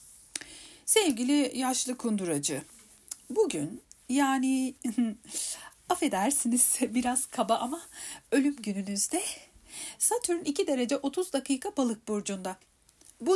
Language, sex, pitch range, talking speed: Turkish, female, 235-300 Hz, 85 wpm